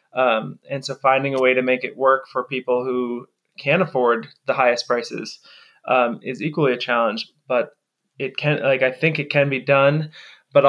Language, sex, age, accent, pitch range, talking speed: English, male, 20-39, American, 130-150 Hz, 195 wpm